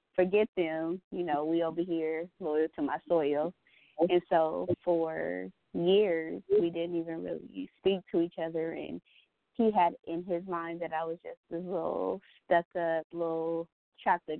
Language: English